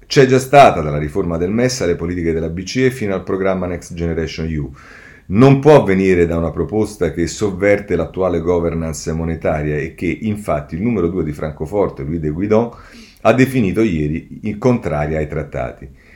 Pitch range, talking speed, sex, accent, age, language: 85-125 Hz, 165 wpm, male, native, 40-59, Italian